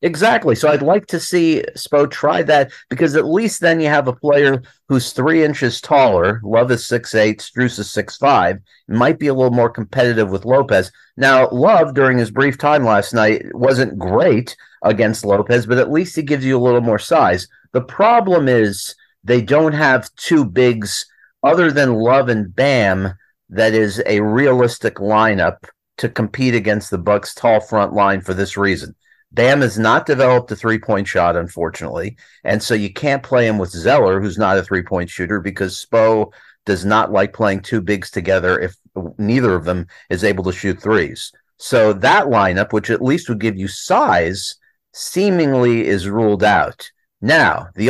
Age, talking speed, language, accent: 50-69, 175 wpm, English, American